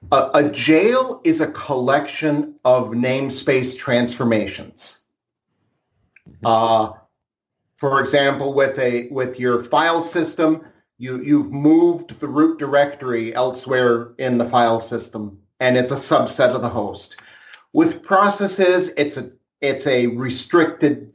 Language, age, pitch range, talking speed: English, 40-59, 125-175 Hz, 120 wpm